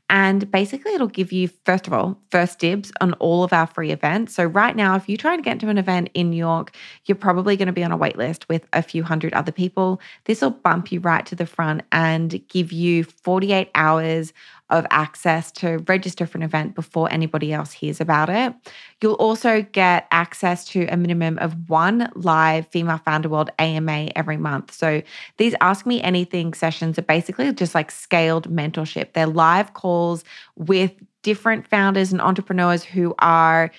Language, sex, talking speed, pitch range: English, female, 195 wpm, 160-195 Hz